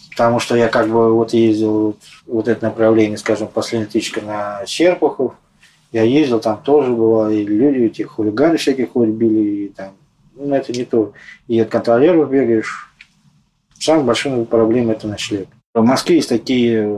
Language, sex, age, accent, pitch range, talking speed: Russian, male, 20-39, native, 105-125 Hz, 155 wpm